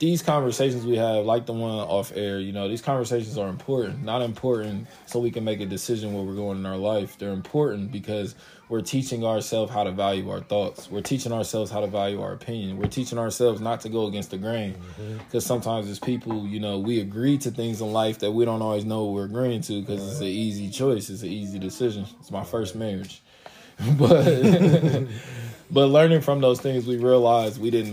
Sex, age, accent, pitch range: male, 20-39, American, 100-125 Hz